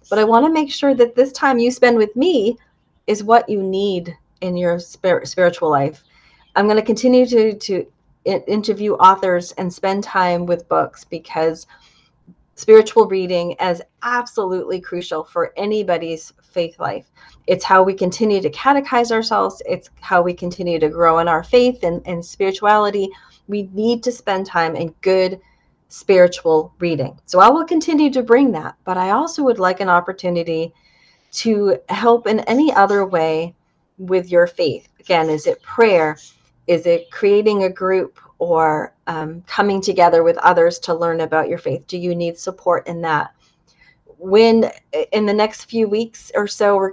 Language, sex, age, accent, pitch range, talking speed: English, female, 30-49, American, 170-225 Hz, 165 wpm